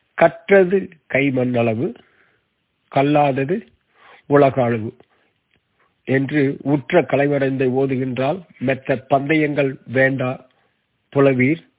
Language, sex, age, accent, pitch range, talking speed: Tamil, male, 50-69, native, 125-145 Hz, 70 wpm